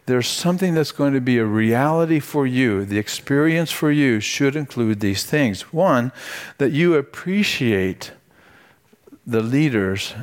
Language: English